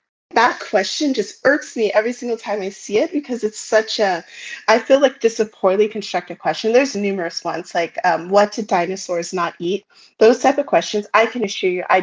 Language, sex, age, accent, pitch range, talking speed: English, female, 30-49, American, 185-215 Hz, 215 wpm